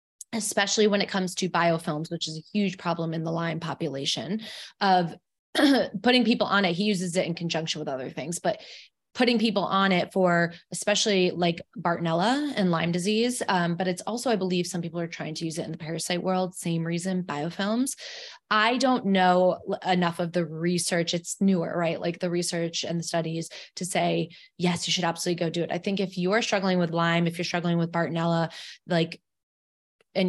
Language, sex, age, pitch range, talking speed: English, female, 20-39, 165-185 Hz, 195 wpm